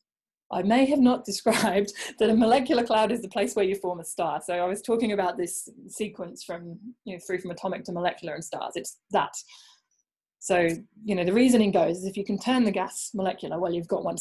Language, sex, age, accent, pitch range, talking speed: English, female, 20-39, British, 185-230 Hz, 230 wpm